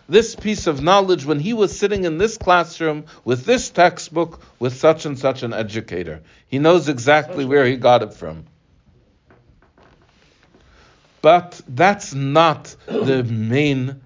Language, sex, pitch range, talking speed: English, male, 105-150 Hz, 140 wpm